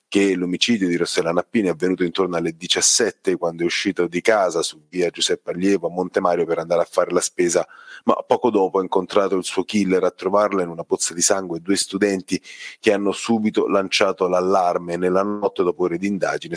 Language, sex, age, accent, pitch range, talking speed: Italian, male, 30-49, native, 90-110 Hz, 200 wpm